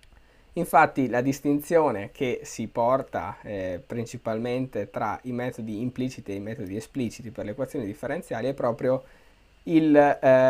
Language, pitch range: Italian, 115-140 Hz